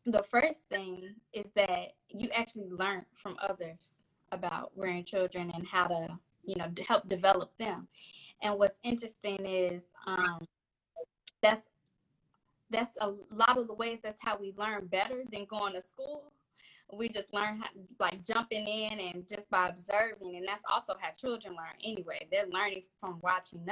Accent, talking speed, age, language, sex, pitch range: American, 160 wpm, 10-29, English, female, 180-210 Hz